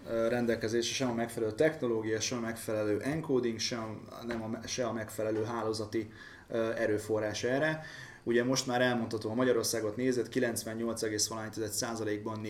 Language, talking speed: Hungarian, 125 wpm